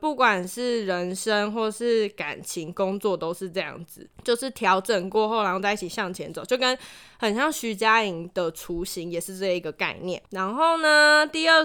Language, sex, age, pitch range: Chinese, female, 20-39, 195-280 Hz